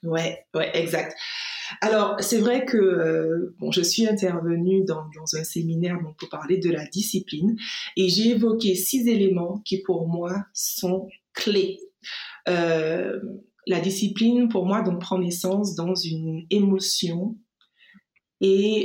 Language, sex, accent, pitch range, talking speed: French, female, French, 170-205 Hz, 140 wpm